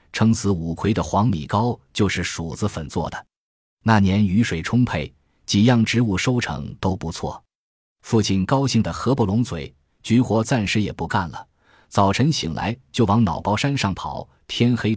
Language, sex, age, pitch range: Chinese, male, 20-39, 90-115 Hz